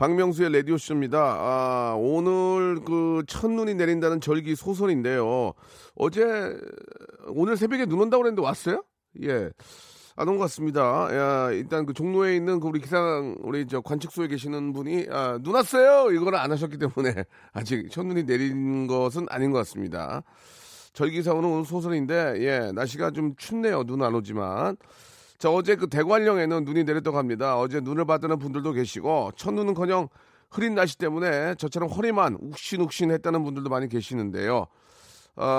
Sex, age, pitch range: male, 40-59, 125-175 Hz